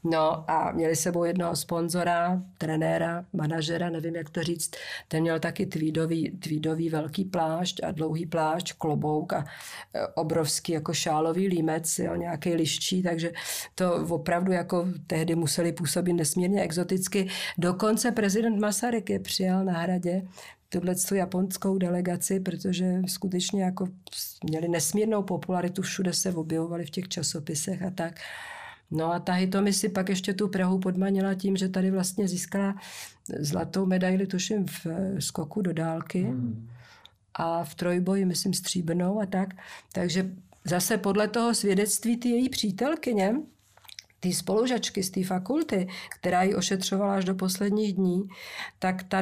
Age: 50-69